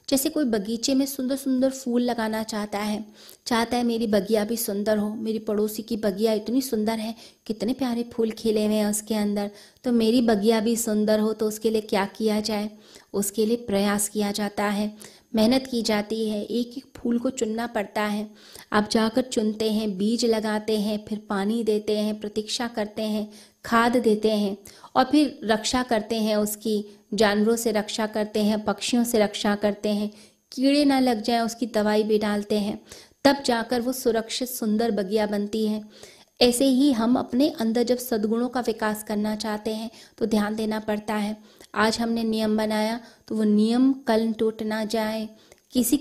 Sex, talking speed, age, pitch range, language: female, 180 wpm, 20-39, 210-235 Hz, Hindi